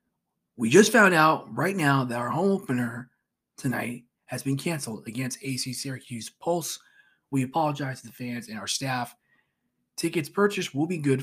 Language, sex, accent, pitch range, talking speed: English, male, American, 115-150 Hz, 165 wpm